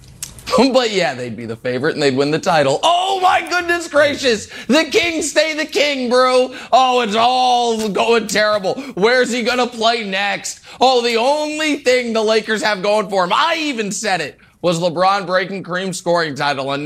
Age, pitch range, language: 30-49, 160-225 Hz, English